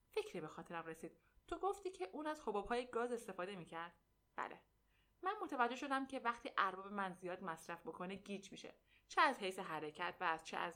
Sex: female